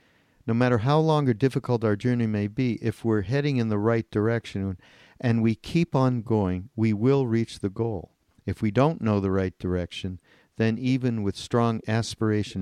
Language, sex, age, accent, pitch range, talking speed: English, male, 50-69, American, 100-130 Hz, 185 wpm